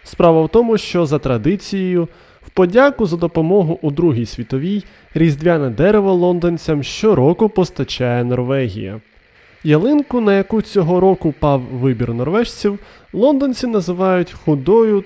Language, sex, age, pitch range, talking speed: Ukrainian, male, 20-39, 130-200 Hz, 120 wpm